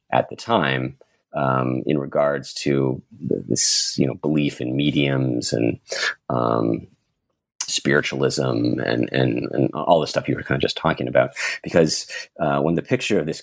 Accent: American